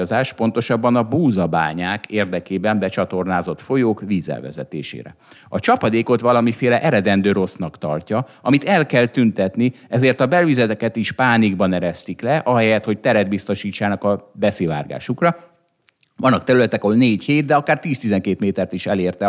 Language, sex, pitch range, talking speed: Hungarian, male, 100-130 Hz, 130 wpm